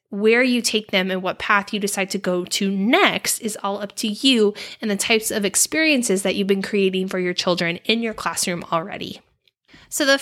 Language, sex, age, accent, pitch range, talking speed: English, female, 10-29, American, 185-265 Hz, 210 wpm